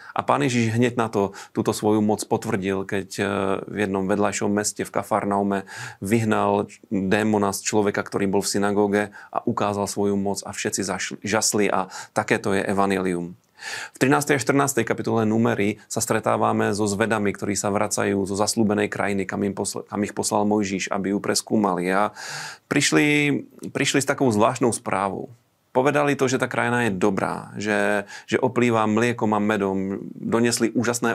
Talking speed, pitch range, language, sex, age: 160 wpm, 100-115 Hz, Slovak, male, 30-49